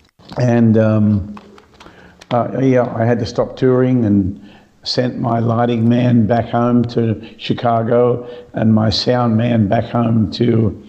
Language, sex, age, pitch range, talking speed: English, male, 50-69, 110-120 Hz, 140 wpm